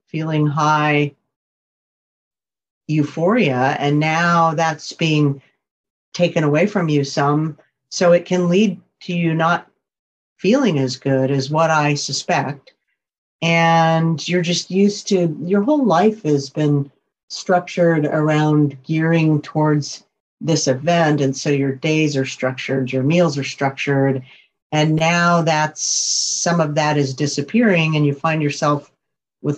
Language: English